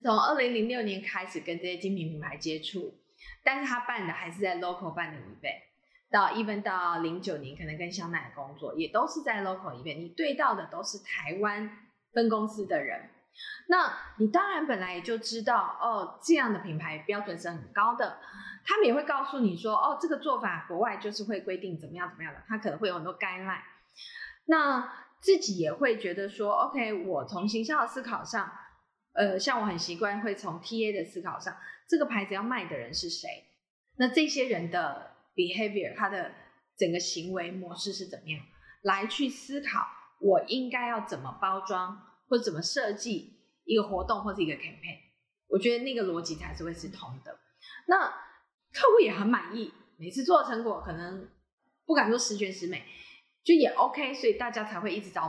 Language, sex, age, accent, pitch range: Chinese, female, 20-39, native, 180-255 Hz